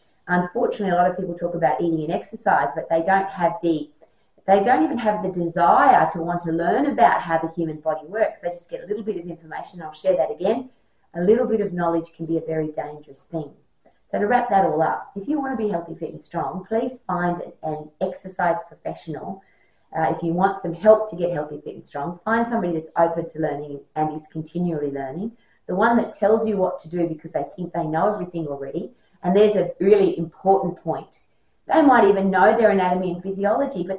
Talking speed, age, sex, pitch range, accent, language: 220 wpm, 30-49, female, 160-210 Hz, Australian, English